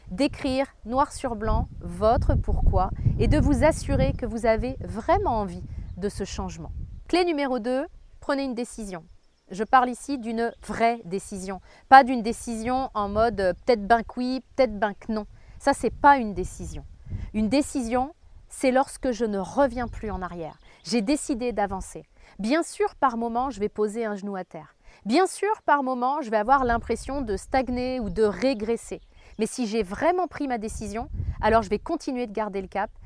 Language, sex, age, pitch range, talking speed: French, female, 30-49, 210-265 Hz, 185 wpm